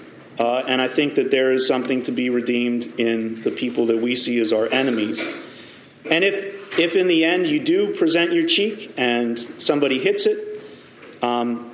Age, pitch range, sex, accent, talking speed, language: 40-59, 125-195 Hz, male, American, 185 wpm, English